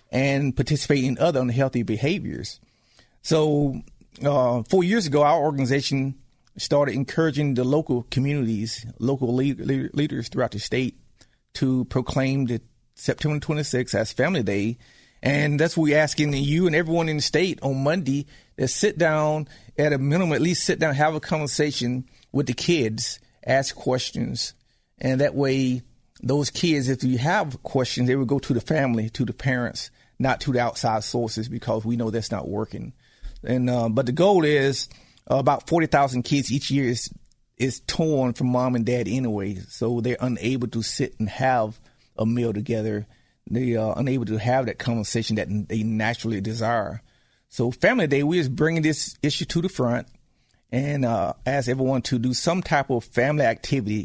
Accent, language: American, English